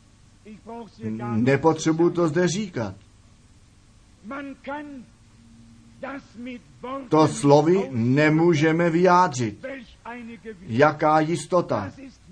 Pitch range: 135-220 Hz